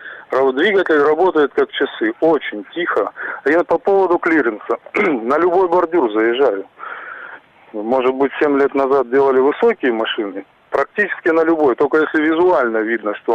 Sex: male